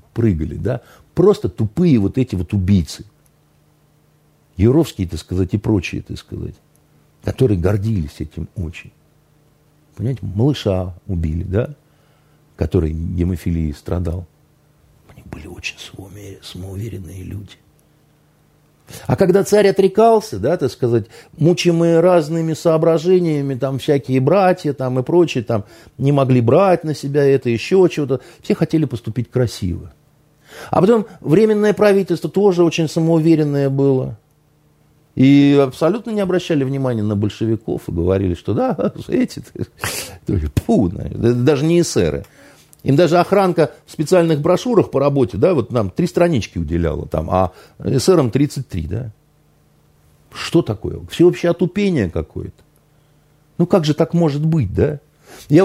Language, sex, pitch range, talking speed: Russian, male, 100-165 Hz, 125 wpm